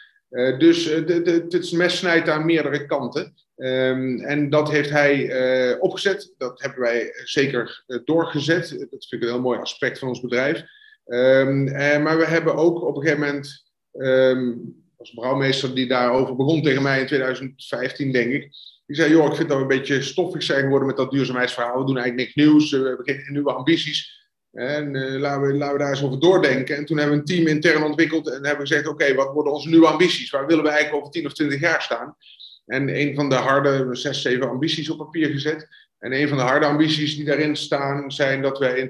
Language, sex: Dutch, male